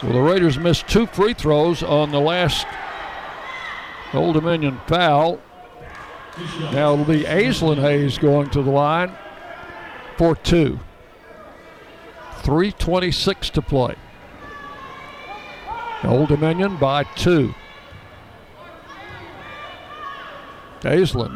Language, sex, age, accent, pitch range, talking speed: English, male, 60-79, American, 145-180 Hz, 90 wpm